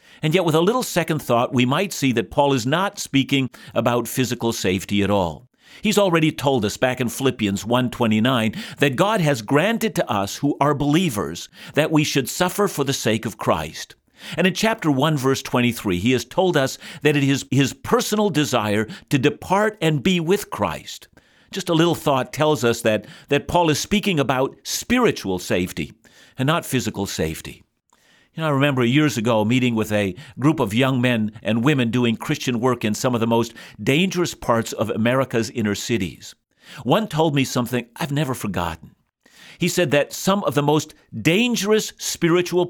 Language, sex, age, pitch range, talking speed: English, male, 50-69, 120-165 Hz, 180 wpm